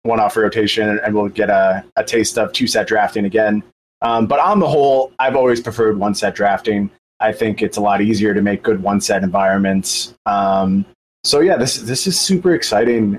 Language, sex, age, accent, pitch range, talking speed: English, male, 30-49, American, 100-155 Hz, 185 wpm